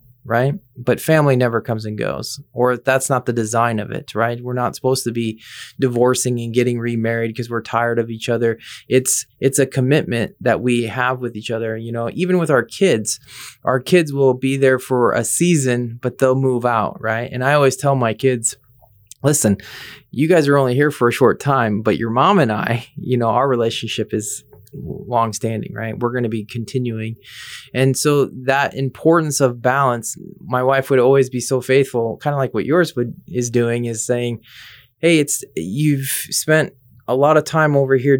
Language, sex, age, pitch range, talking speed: English, male, 20-39, 115-135 Hz, 200 wpm